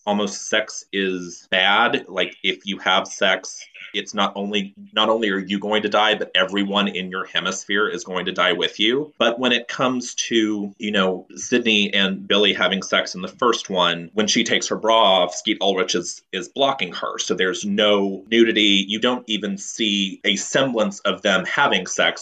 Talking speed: 195 wpm